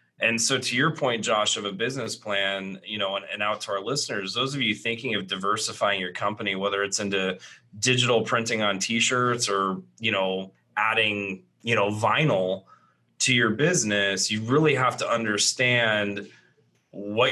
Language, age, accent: English, 30-49, American